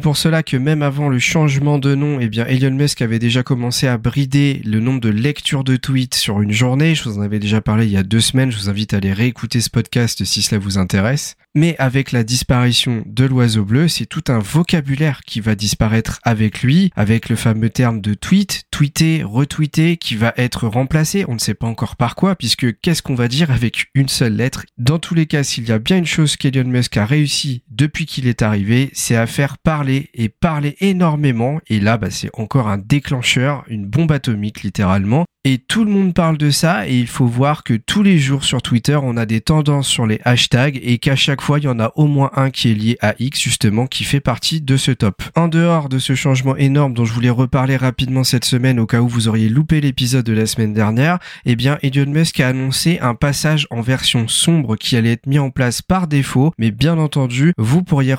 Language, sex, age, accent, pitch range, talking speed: French, male, 40-59, French, 115-145 Hz, 235 wpm